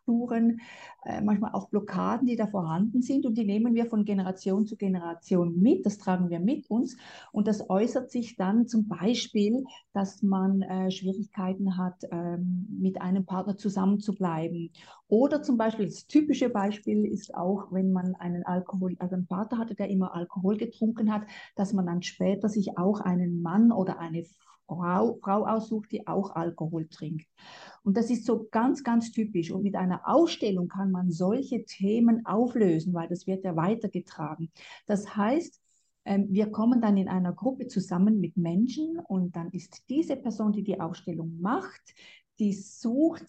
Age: 50-69